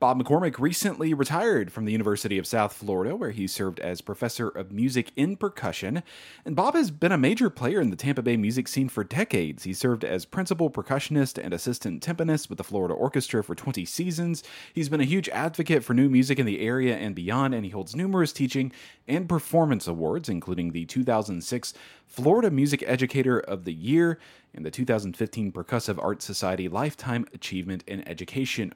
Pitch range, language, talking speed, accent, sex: 100-140 Hz, English, 185 wpm, American, male